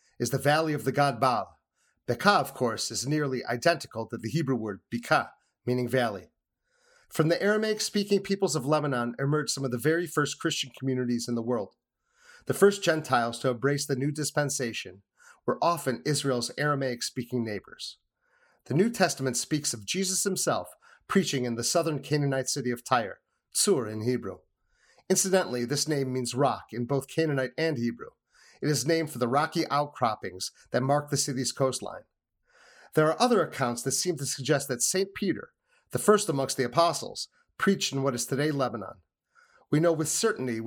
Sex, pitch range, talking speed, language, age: male, 125-165 Hz, 170 wpm, English, 30-49